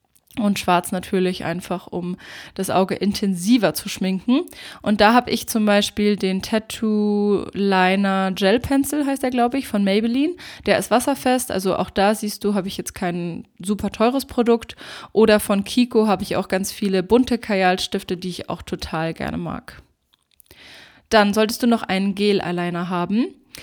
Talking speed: 165 wpm